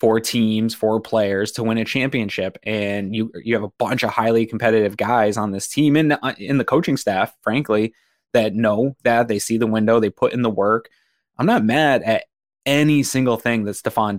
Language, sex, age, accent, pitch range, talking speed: English, male, 20-39, American, 105-125 Hz, 205 wpm